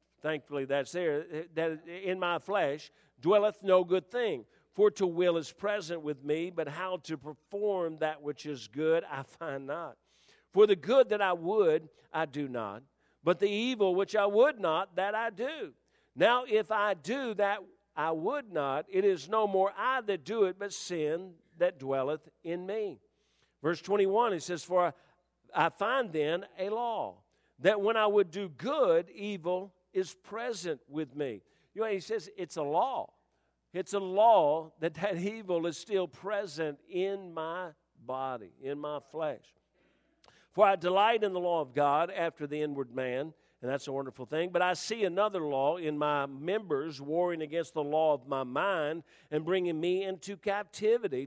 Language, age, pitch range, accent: English, 50-69, 150-205 Hz, American